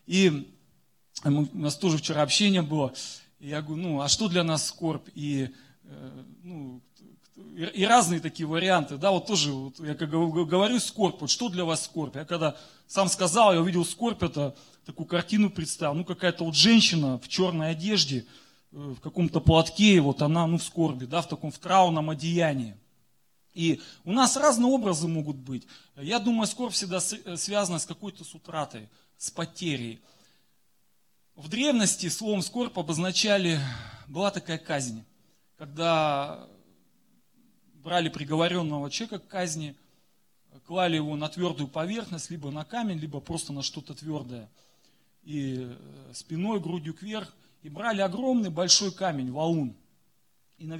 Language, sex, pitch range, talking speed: Russian, male, 150-185 Hz, 145 wpm